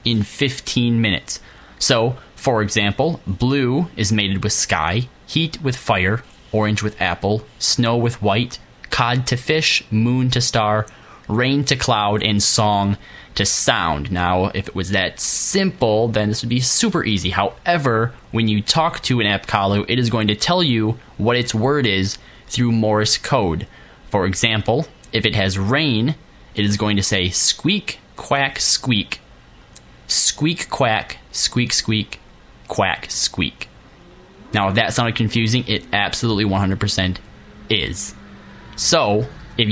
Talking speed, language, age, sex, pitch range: 150 wpm, English, 20-39, male, 100-125 Hz